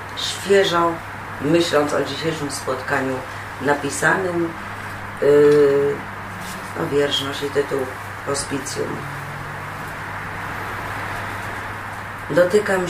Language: Polish